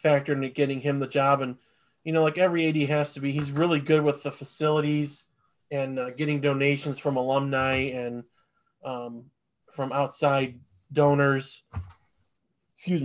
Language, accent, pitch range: English, American, 135-160 Hz